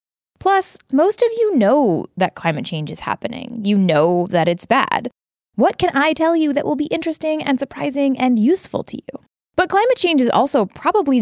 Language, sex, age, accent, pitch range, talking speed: English, female, 10-29, American, 185-290 Hz, 195 wpm